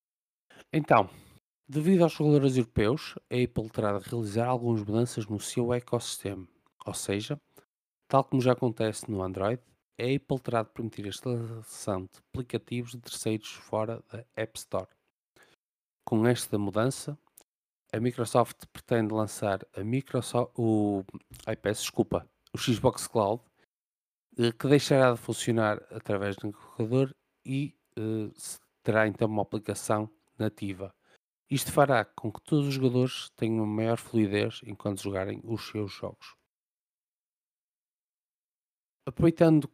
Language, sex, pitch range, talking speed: Portuguese, male, 105-130 Hz, 120 wpm